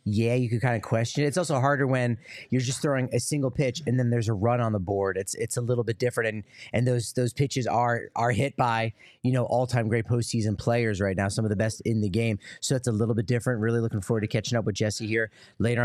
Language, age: English, 30-49